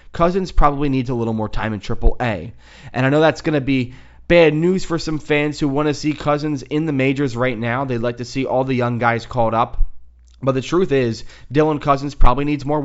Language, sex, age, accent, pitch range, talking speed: English, male, 30-49, American, 115-150 Hz, 235 wpm